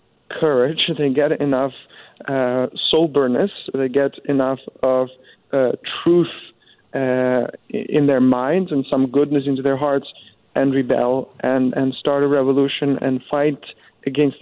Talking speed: 135 wpm